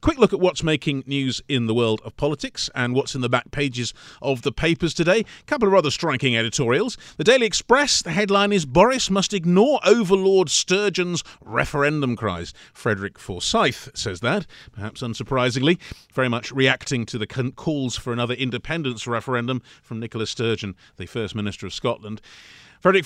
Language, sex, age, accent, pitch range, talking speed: English, male, 40-59, British, 120-180 Hz, 170 wpm